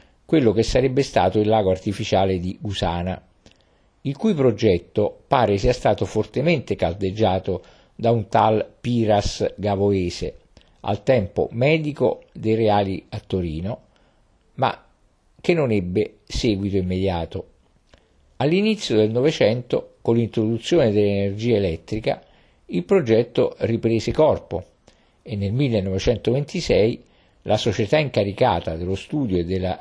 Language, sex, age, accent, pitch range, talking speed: Italian, male, 50-69, native, 95-120 Hz, 115 wpm